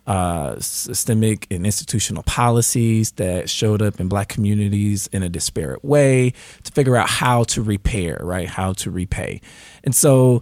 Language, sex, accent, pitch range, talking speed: English, male, American, 100-125 Hz, 155 wpm